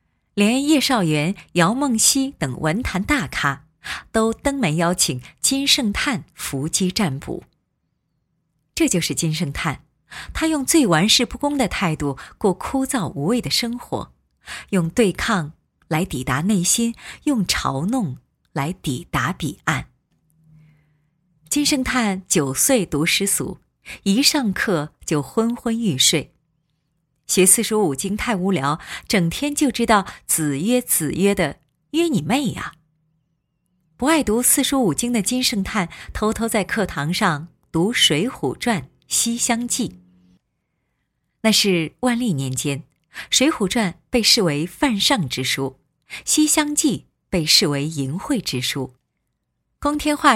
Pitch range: 155-245 Hz